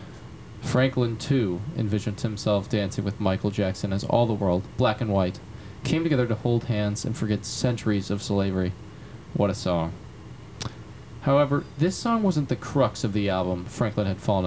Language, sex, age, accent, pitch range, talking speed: English, male, 20-39, American, 105-135 Hz, 165 wpm